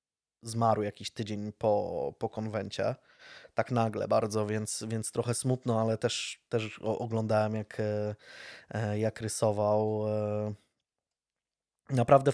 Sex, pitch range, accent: male, 110-145 Hz, native